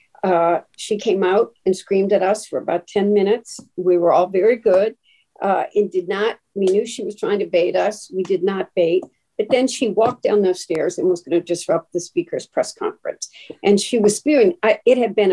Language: English